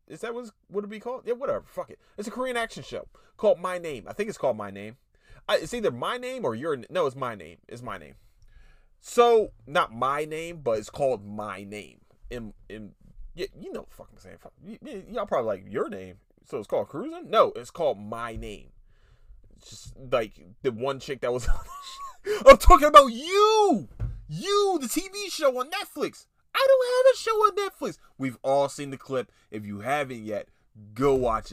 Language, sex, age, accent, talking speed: English, male, 30-49, American, 205 wpm